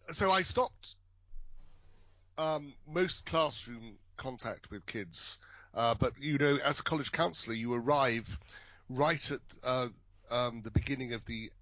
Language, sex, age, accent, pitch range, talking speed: English, male, 40-59, British, 95-115 Hz, 140 wpm